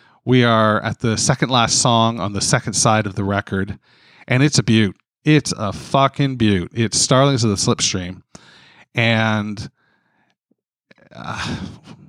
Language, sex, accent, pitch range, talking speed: English, male, American, 110-150 Hz, 145 wpm